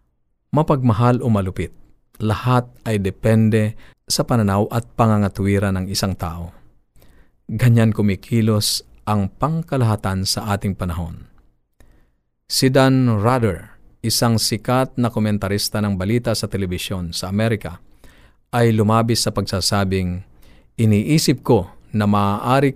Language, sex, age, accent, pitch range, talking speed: Filipino, male, 50-69, native, 95-120 Hz, 110 wpm